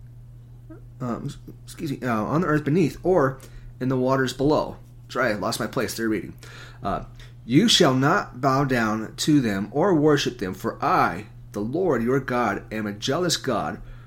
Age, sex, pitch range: 30-49, male, 120-140 Hz